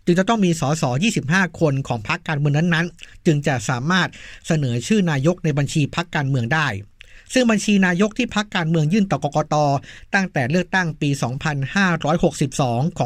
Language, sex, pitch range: Thai, male, 140-180 Hz